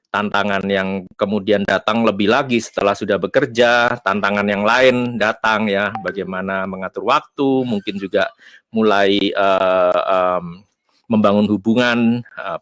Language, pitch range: Indonesian, 95-125 Hz